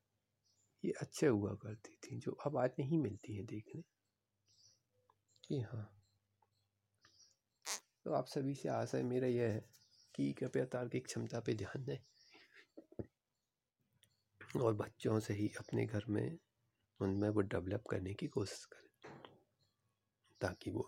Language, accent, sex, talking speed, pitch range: Hindi, native, male, 130 wpm, 100-125 Hz